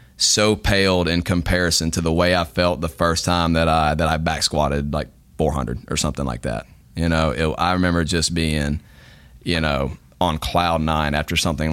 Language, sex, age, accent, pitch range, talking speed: English, male, 30-49, American, 75-90 Hz, 200 wpm